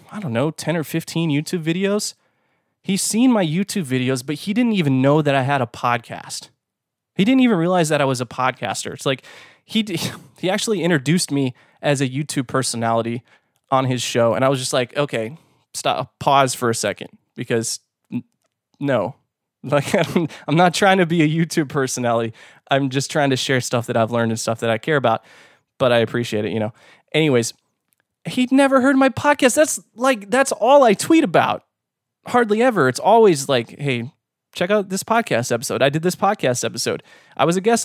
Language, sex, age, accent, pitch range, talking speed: English, male, 20-39, American, 125-200 Hz, 195 wpm